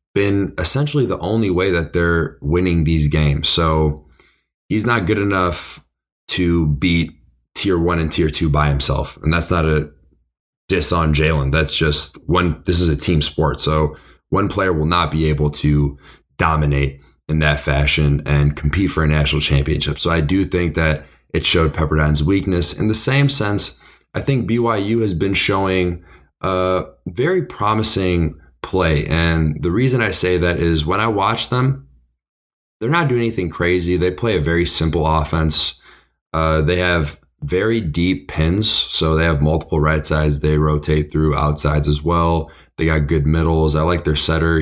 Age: 20-39